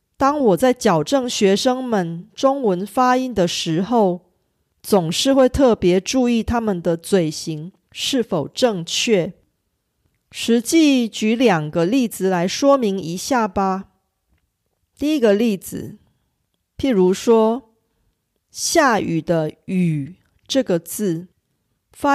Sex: female